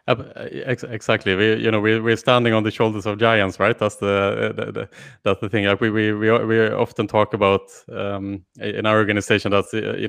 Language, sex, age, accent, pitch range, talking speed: English, male, 20-39, Norwegian, 100-110 Hz, 215 wpm